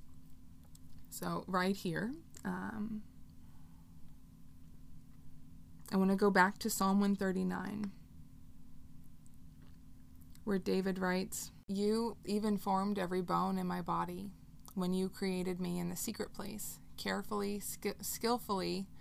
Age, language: 20-39, English